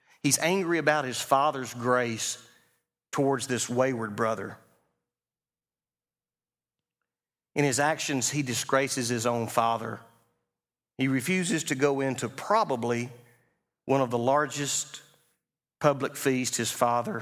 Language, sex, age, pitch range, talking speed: English, male, 40-59, 115-145 Hz, 110 wpm